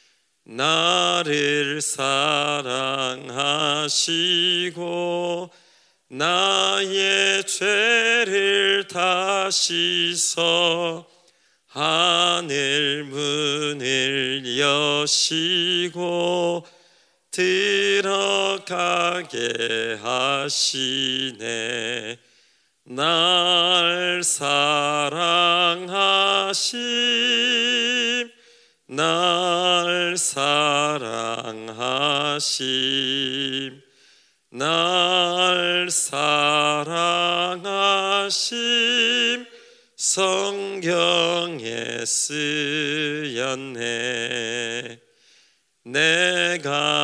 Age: 40-59